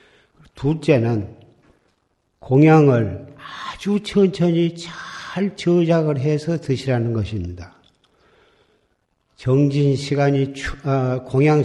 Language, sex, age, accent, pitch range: Korean, male, 50-69, native, 125-155 Hz